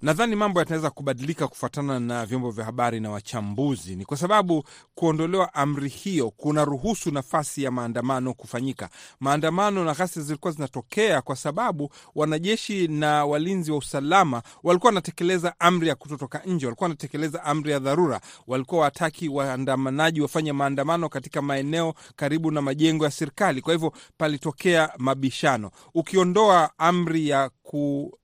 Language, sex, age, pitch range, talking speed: Swahili, male, 40-59, 135-170 Hz, 140 wpm